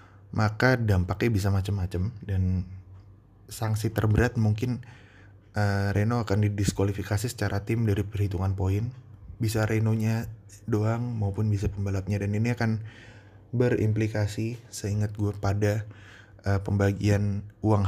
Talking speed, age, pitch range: 110 wpm, 20-39, 95-110 Hz